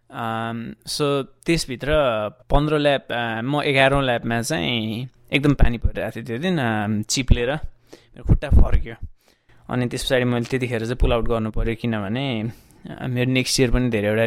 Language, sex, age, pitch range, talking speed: English, male, 20-39, 110-130 Hz, 80 wpm